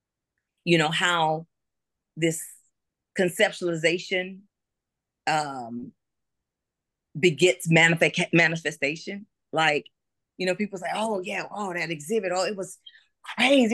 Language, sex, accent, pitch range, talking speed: English, female, American, 165-235 Hz, 100 wpm